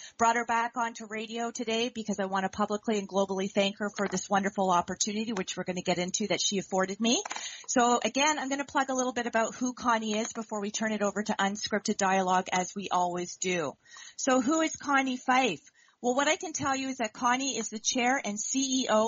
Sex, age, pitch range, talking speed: female, 40-59, 205-255 Hz, 230 wpm